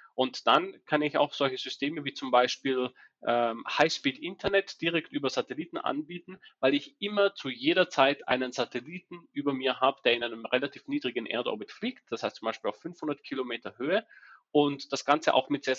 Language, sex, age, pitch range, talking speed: German, male, 30-49, 135-160 Hz, 185 wpm